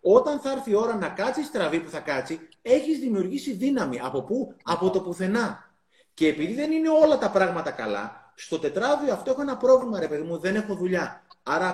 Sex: male